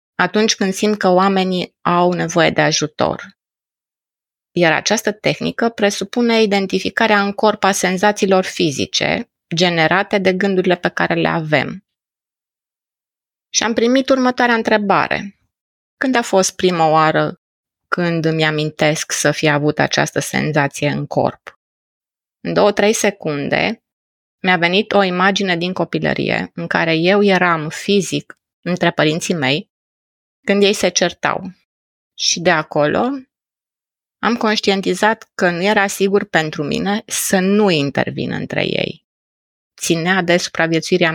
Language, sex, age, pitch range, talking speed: Romanian, female, 20-39, 160-205 Hz, 125 wpm